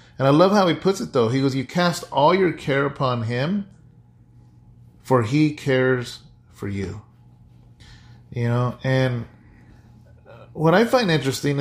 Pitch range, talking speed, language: 120-155 Hz, 150 wpm, English